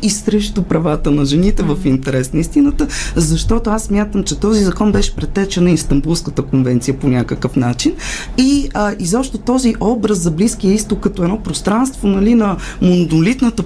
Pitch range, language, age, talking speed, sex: 160-220 Hz, Bulgarian, 20-39, 155 wpm, female